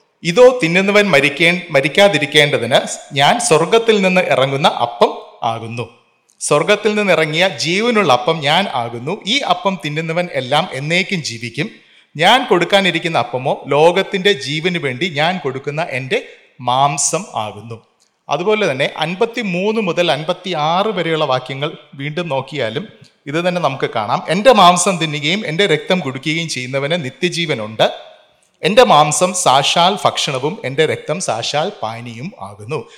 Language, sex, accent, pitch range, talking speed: Malayalam, male, native, 135-200 Hz, 115 wpm